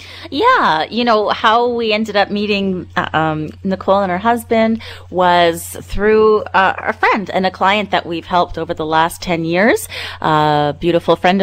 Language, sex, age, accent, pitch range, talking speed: English, female, 30-49, American, 150-190 Hz, 170 wpm